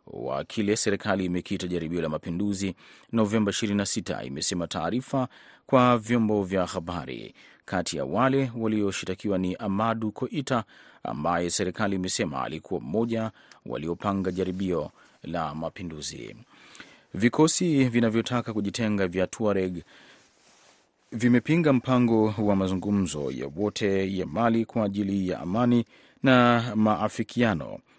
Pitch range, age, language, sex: 90-110 Hz, 30-49, Swahili, male